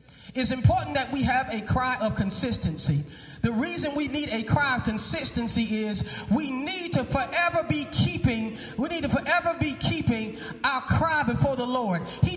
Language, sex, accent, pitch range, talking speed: English, male, American, 195-270 Hz, 175 wpm